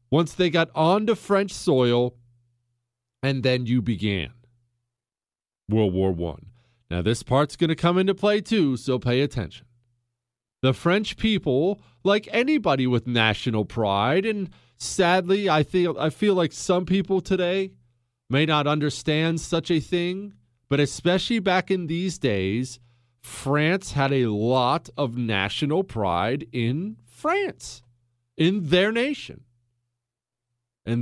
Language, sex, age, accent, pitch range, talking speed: English, male, 40-59, American, 120-170 Hz, 130 wpm